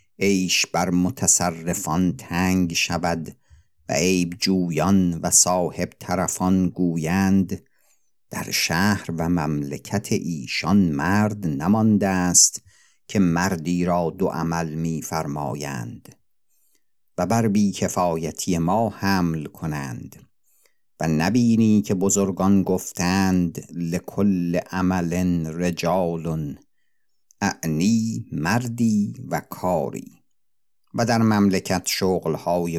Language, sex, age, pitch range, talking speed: Persian, male, 50-69, 85-100 Hz, 90 wpm